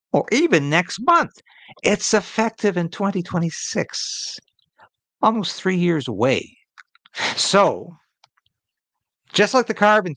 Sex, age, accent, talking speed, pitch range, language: male, 60-79, American, 100 wpm, 125-195 Hz, English